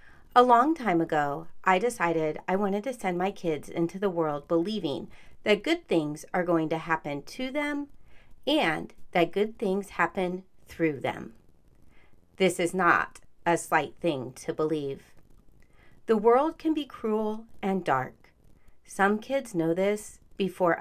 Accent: American